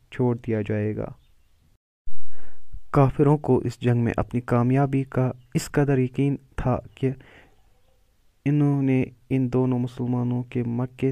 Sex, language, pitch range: male, Urdu, 115-125 Hz